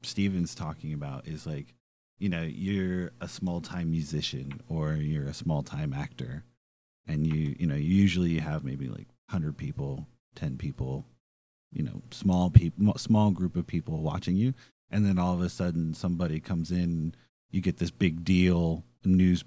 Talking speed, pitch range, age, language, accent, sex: 165 wpm, 80-95 Hz, 30-49, English, American, male